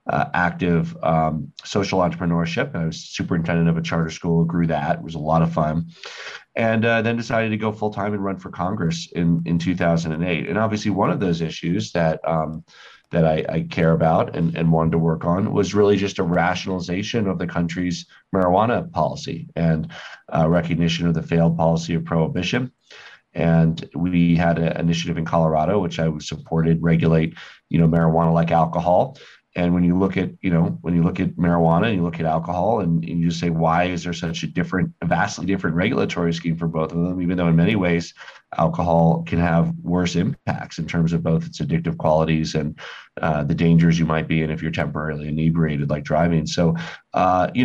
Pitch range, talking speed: 80-90 Hz, 200 wpm